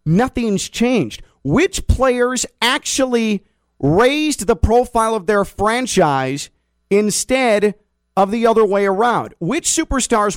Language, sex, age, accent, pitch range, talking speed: English, male, 40-59, American, 150-220 Hz, 110 wpm